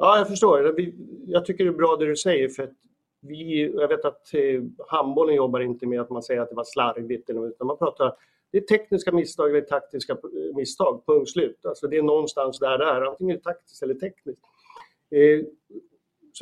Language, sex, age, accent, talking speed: Swedish, male, 50-69, native, 200 wpm